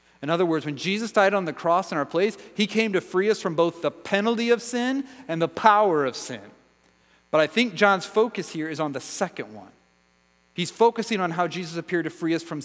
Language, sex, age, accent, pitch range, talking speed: English, male, 30-49, American, 145-195 Hz, 230 wpm